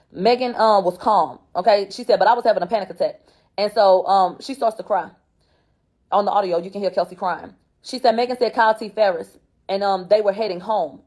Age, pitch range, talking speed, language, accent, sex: 20-39, 180-225 Hz, 235 wpm, English, American, female